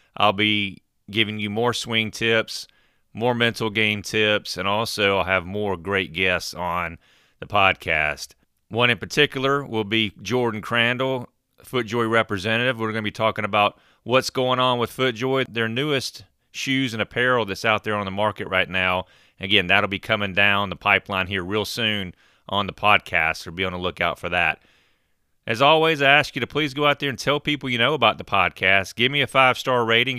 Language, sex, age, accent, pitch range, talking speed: English, male, 30-49, American, 100-125 Hz, 195 wpm